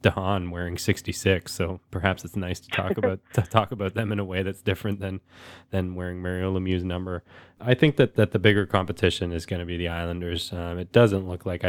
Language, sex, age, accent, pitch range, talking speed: English, male, 20-39, American, 85-105 Hz, 220 wpm